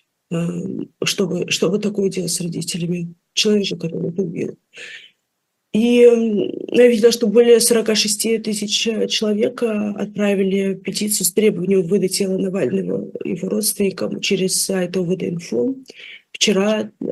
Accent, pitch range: native, 185-215 Hz